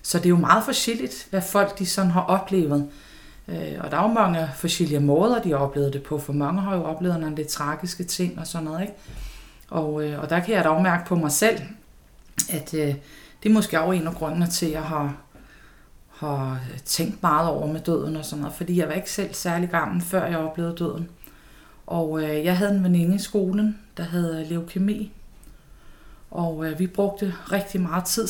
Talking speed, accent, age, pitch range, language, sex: 205 wpm, native, 30-49, 155-190 Hz, Danish, female